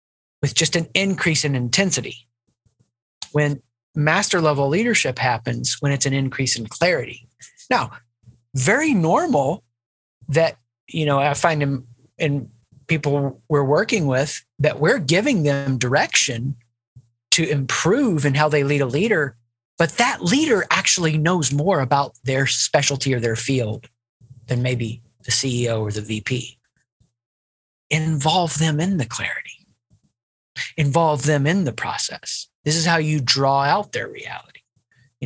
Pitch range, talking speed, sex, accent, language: 120-155 Hz, 140 wpm, male, American, English